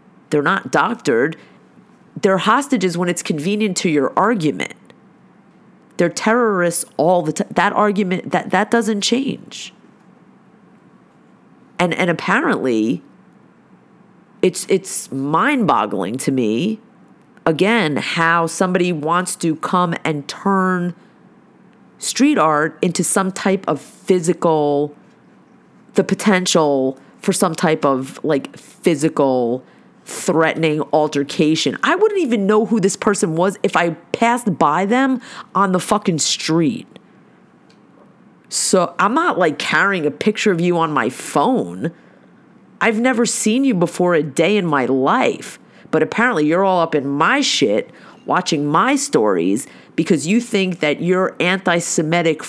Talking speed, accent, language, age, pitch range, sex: 130 wpm, American, English, 30-49, 165-210 Hz, female